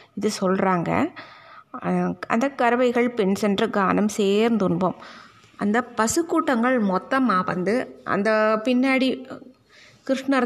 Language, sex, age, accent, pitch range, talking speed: Tamil, female, 20-39, native, 200-260 Hz, 85 wpm